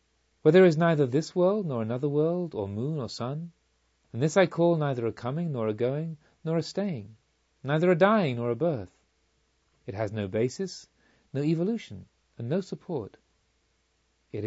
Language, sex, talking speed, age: English, male, 175 wpm, 40-59